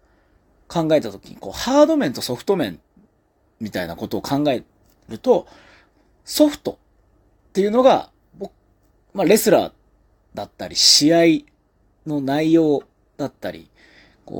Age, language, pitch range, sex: 30-49, Japanese, 105-170 Hz, male